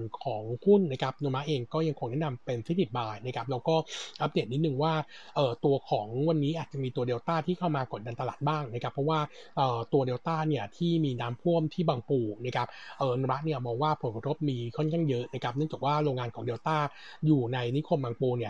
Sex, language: male, Thai